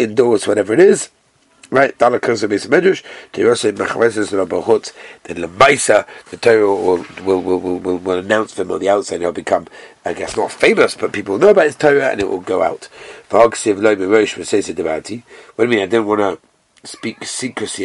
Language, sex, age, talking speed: English, male, 50-69, 150 wpm